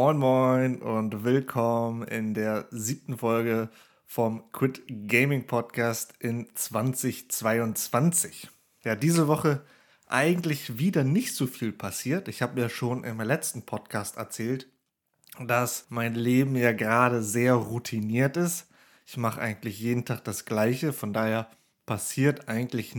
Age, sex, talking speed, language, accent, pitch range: 30-49, male, 130 wpm, German, German, 115-135 Hz